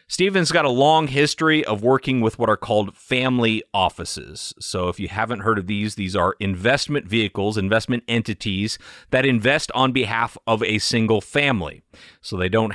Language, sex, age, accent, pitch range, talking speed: English, male, 30-49, American, 100-135 Hz, 180 wpm